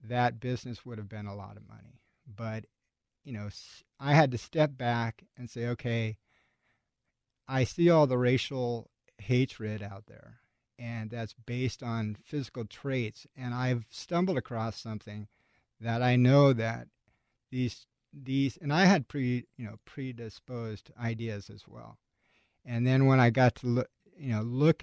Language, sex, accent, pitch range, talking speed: English, male, American, 110-125 Hz, 155 wpm